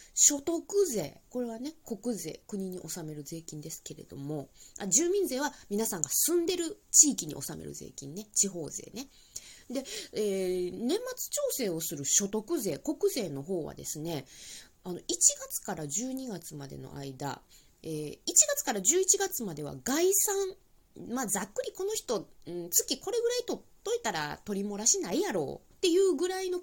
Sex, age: female, 20-39